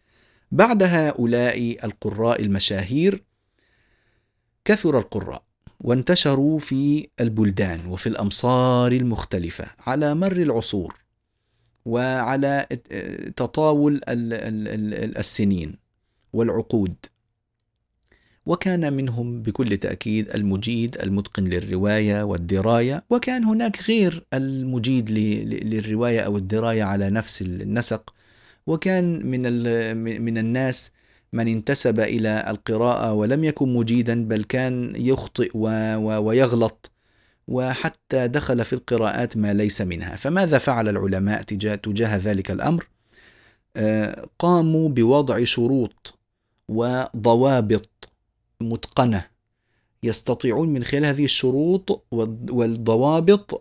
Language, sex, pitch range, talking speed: Arabic, male, 105-130 Hz, 85 wpm